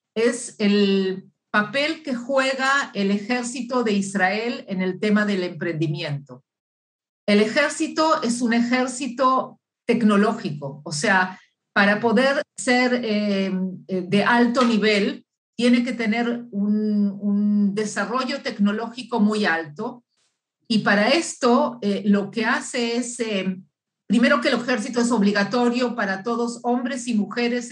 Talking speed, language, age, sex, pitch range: 125 wpm, Spanish, 50-69, female, 200-250 Hz